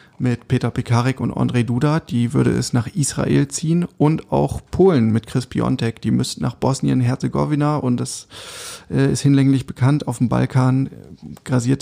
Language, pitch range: German, 125-145 Hz